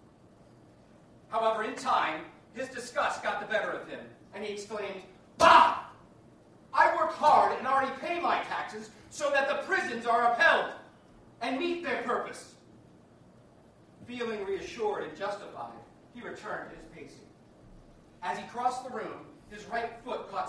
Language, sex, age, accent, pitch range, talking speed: English, male, 40-59, American, 185-265 Hz, 145 wpm